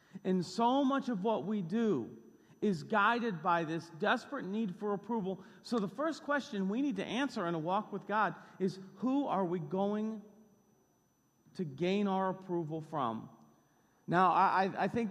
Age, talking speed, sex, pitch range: 40-59, 165 wpm, male, 180-225 Hz